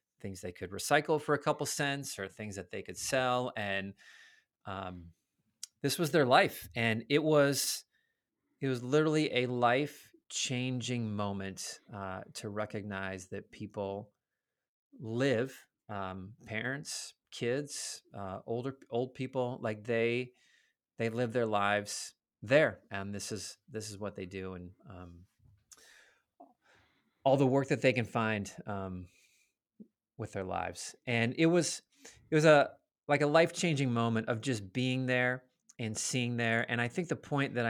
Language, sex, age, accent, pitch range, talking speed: English, male, 30-49, American, 105-145 Hz, 150 wpm